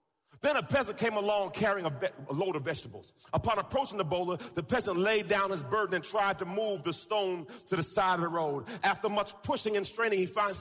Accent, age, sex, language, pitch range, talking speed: American, 40-59, male, English, 190-295 Hz, 225 wpm